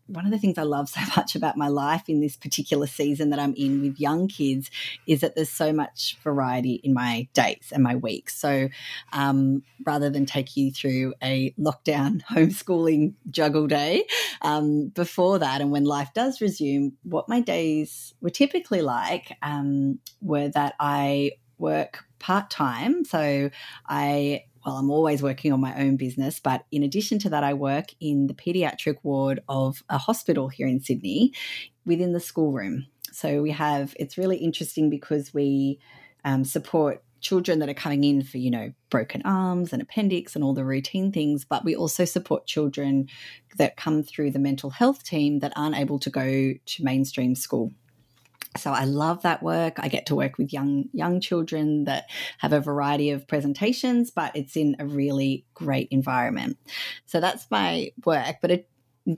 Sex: female